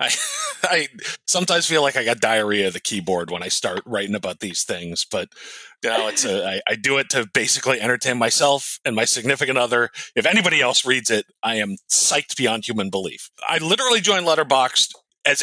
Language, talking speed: English, 195 wpm